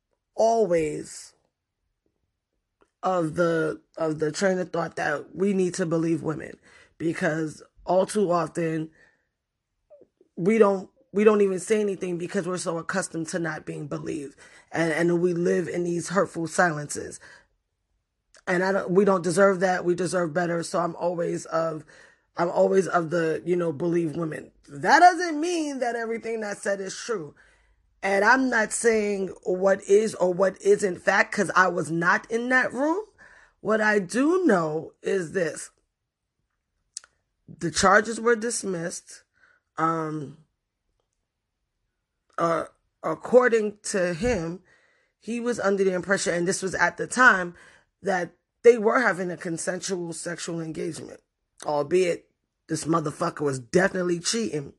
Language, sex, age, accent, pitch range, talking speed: English, female, 20-39, American, 165-205 Hz, 140 wpm